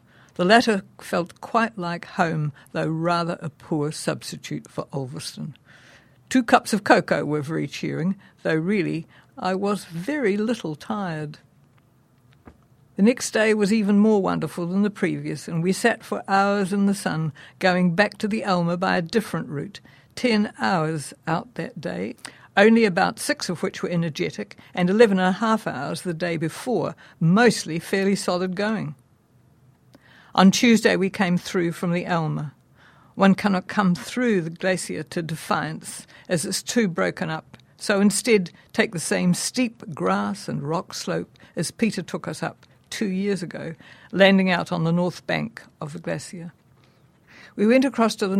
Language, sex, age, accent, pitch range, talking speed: English, female, 60-79, British, 165-205 Hz, 165 wpm